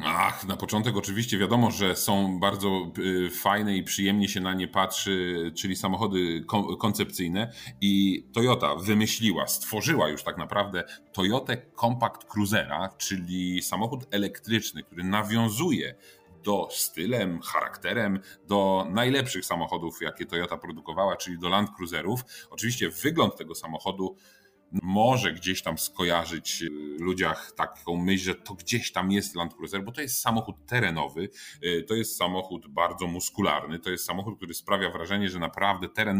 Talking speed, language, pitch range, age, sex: 140 wpm, Polish, 90-105 Hz, 30-49, male